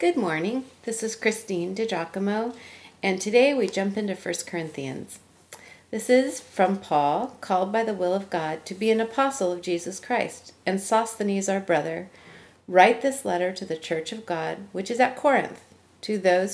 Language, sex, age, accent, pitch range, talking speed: English, female, 40-59, American, 175-230 Hz, 175 wpm